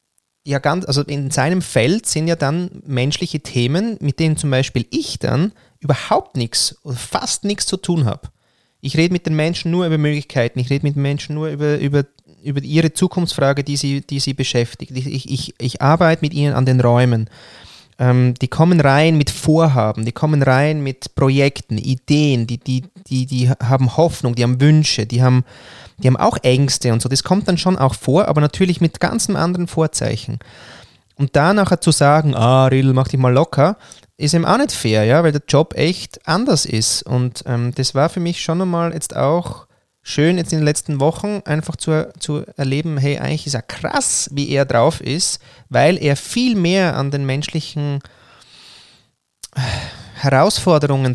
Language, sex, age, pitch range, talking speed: German, male, 30-49, 130-160 Hz, 190 wpm